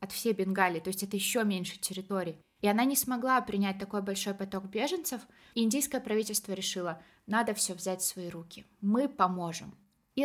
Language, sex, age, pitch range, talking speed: Russian, female, 20-39, 185-215 Hz, 175 wpm